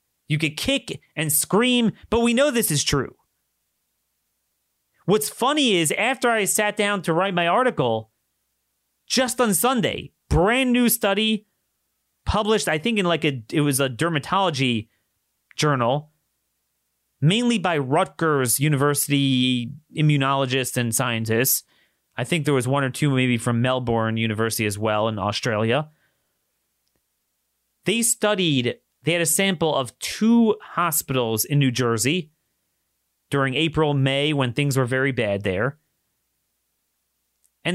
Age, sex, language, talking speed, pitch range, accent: 30-49, male, English, 130 wpm, 125-210 Hz, American